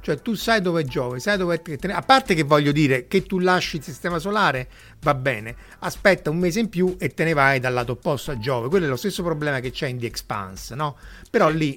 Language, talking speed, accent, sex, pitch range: Italian, 245 wpm, native, male, 125-170 Hz